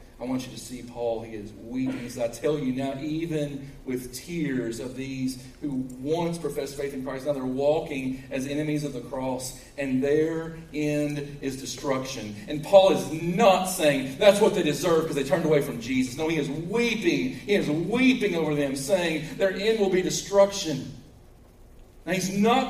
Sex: male